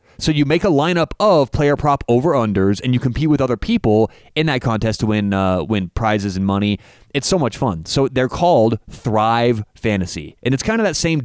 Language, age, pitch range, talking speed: English, 30-49, 105-140 Hz, 215 wpm